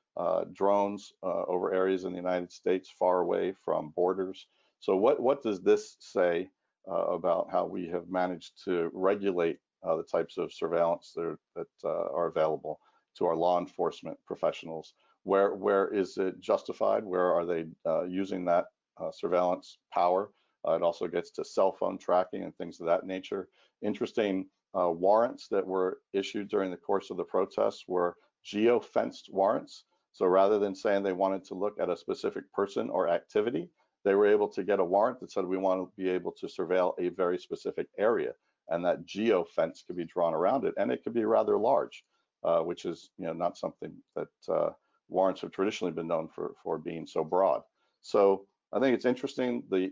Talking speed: 190 wpm